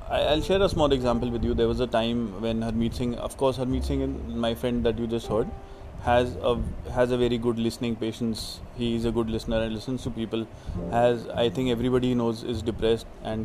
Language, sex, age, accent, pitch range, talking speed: English, male, 20-39, Indian, 105-125 Hz, 220 wpm